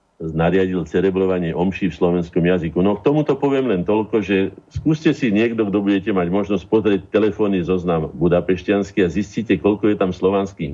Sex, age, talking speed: male, 50-69, 170 wpm